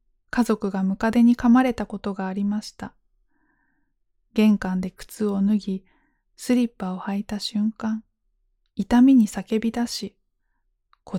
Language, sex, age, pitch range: Japanese, female, 20-39, 195-230 Hz